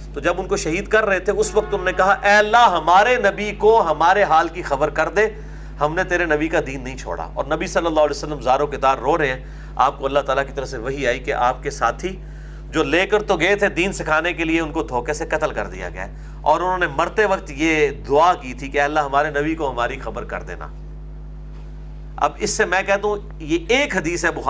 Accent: Indian